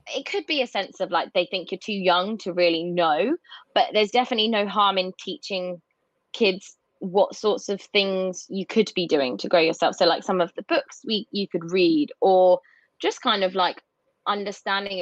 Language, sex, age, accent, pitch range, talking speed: English, female, 20-39, British, 175-215 Hz, 200 wpm